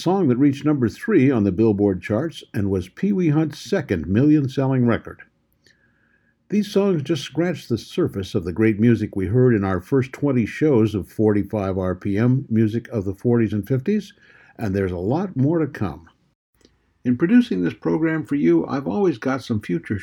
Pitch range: 110-155 Hz